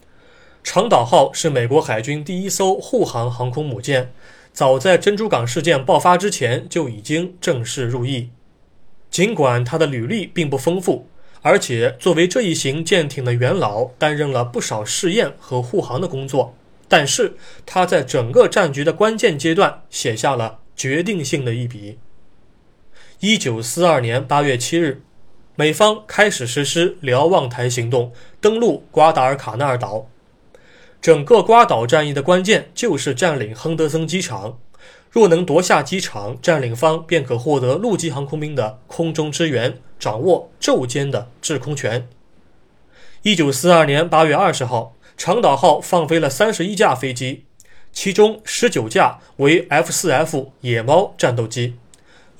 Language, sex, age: Chinese, male, 20-39